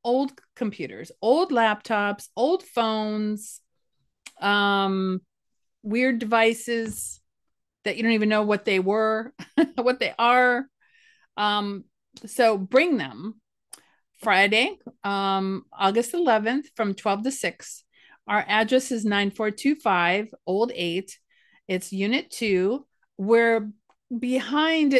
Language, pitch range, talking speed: English, 195-245 Hz, 105 wpm